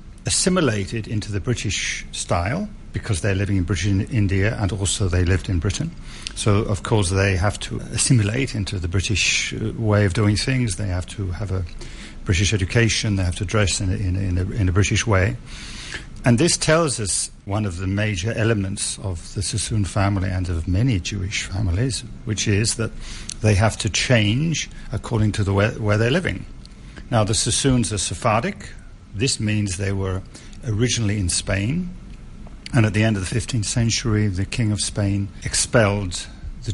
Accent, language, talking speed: British, English, 180 wpm